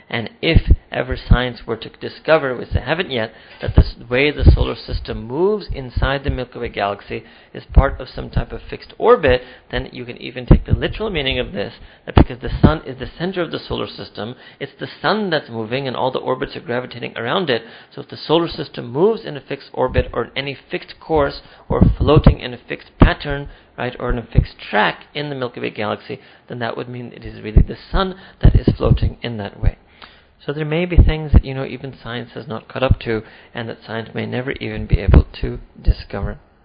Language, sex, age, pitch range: English, male, 40-59, 110-140 Hz